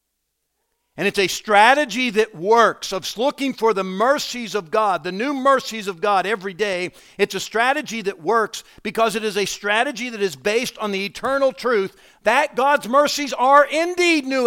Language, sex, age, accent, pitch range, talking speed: English, male, 50-69, American, 155-230 Hz, 180 wpm